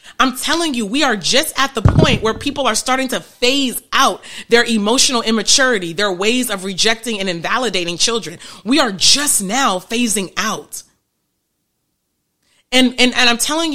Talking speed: 160 wpm